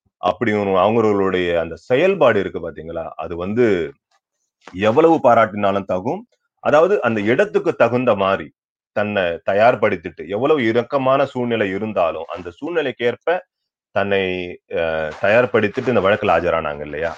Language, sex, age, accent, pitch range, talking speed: Tamil, male, 30-49, native, 90-120 Hz, 110 wpm